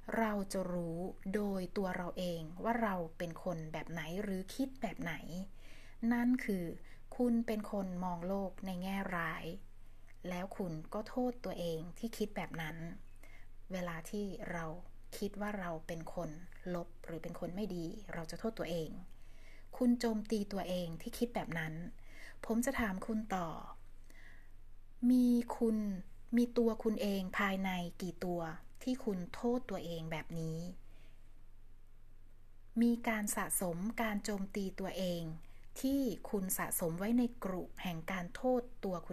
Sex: female